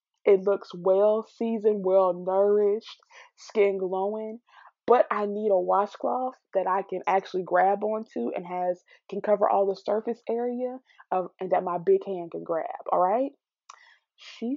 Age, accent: 20-39, American